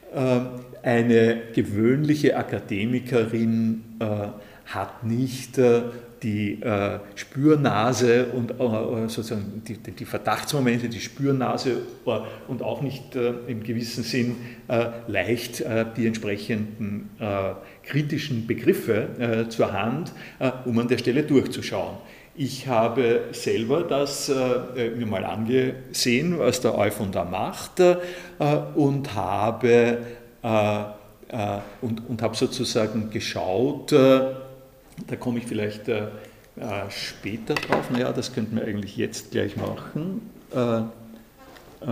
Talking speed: 100 wpm